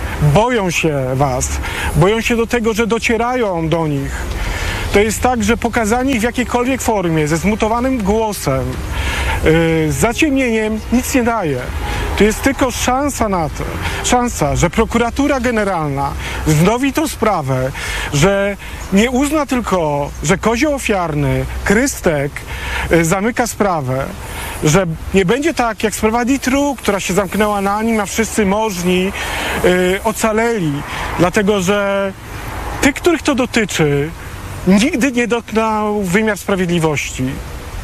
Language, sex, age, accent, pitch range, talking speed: Polish, male, 40-59, native, 155-235 Hz, 125 wpm